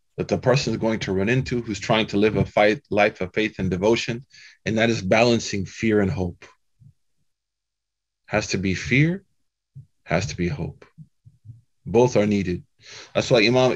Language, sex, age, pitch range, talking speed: English, male, 20-39, 100-125 Hz, 175 wpm